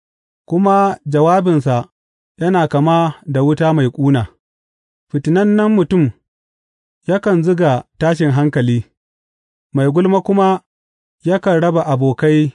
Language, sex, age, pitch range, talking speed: English, male, 30-49, 120-180 Hz, 85 wpm